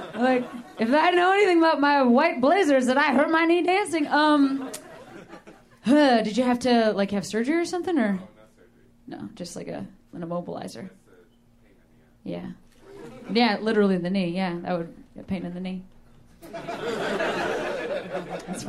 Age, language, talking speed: 30-49, English, 155 wpm